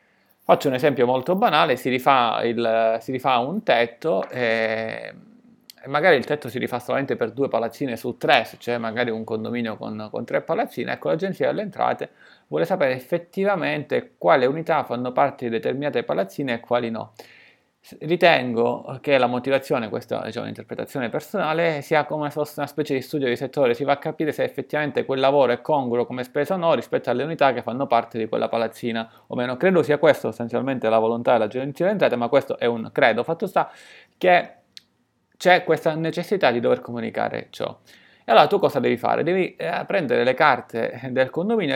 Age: 30-49